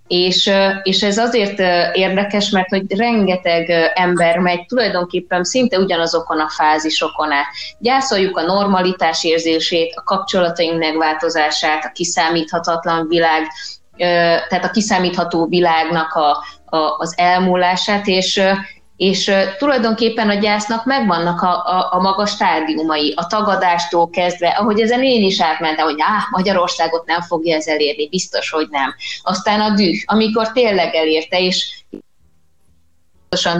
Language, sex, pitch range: Hungarian, female, 165-210 Hz